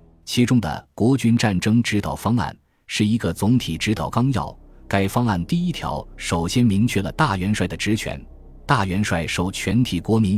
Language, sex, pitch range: Chinese, male, 85-115 Hz